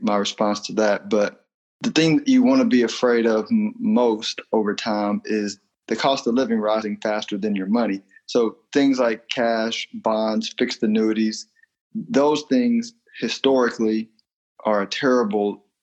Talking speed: 150 wpm